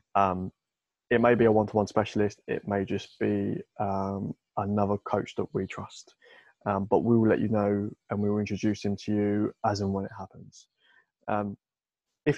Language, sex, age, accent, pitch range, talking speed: English, male, 20-39, British, 100-110 Hz, 185 wpm